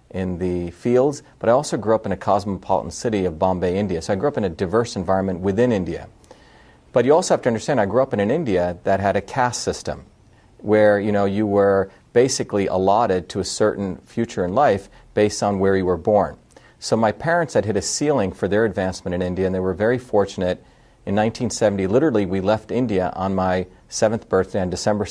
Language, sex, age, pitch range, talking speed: English, male, 40-59, 95-115 Hz, 215 wpm